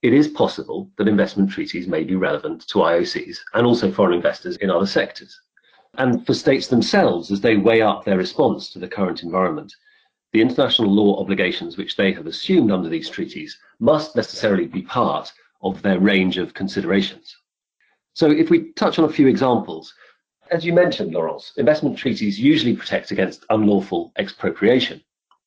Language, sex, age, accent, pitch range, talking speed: English, male, 40-59, British, 100-160 Hz, 165 wpm